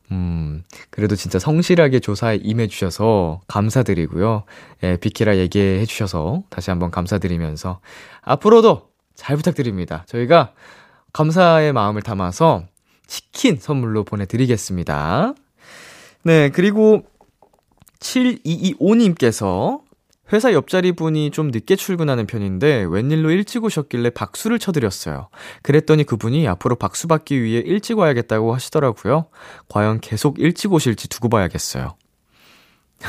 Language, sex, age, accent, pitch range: Korean, male, 20-39, native, 100-165 Hz